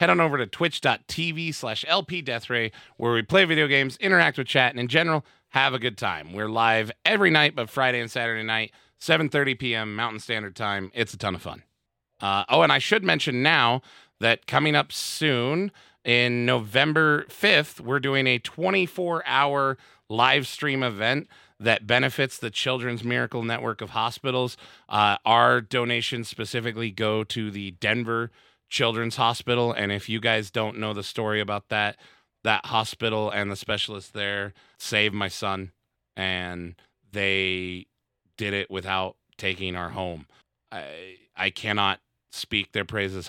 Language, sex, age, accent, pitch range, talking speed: English, male, 30-49, American, 100-125 Hz, 155 wpm